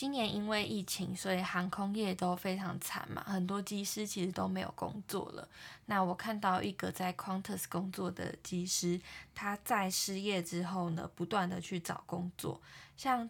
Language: Chinese